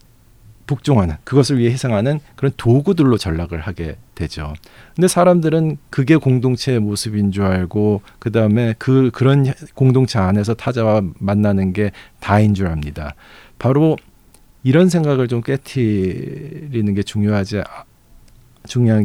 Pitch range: 100-135 Hz